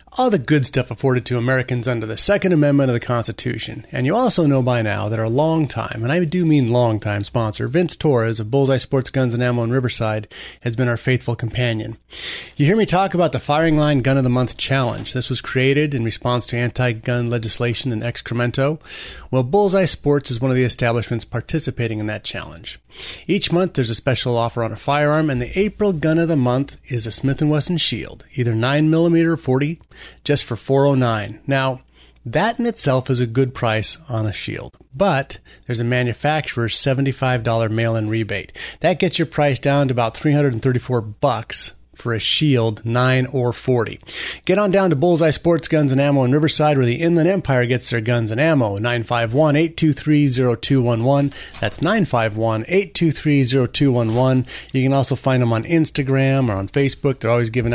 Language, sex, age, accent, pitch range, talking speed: English, male, 30-49, American, 120-150 Hz, 185 wpm